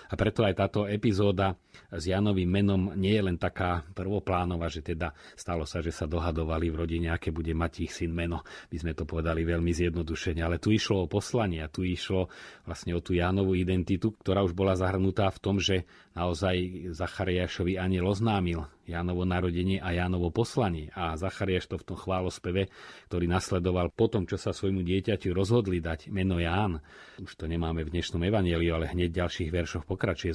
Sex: male